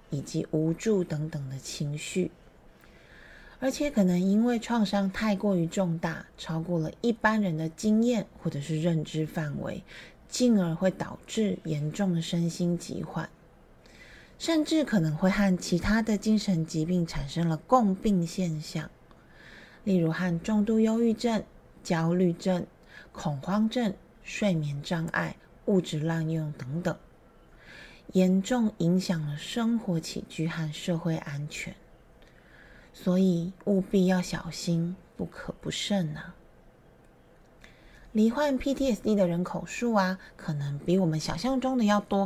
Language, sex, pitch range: Chinese, female, 165-215 Hz